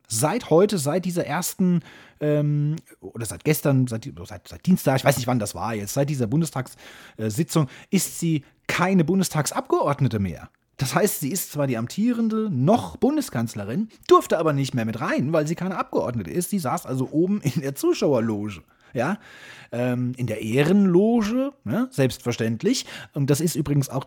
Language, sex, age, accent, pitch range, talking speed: German, male, 30-49, German, 120-155 Hz, 165 wpm